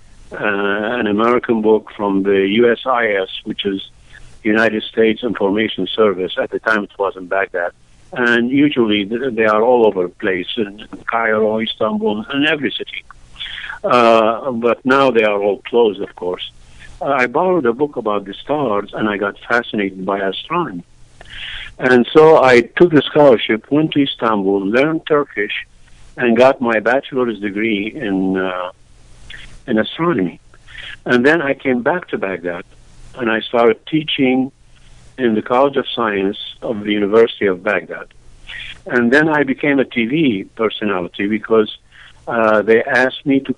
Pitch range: 100-125 Hz